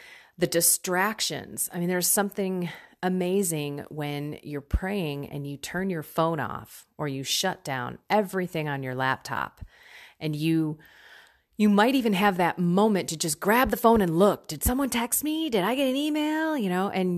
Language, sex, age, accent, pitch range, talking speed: English, female, 30-49, American, 155-205 Hz, 180 wpm